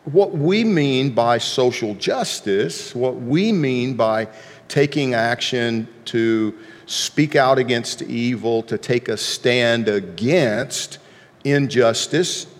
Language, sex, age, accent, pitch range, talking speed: English, male, 50-69, American, 110-140 Hz, 110 wpm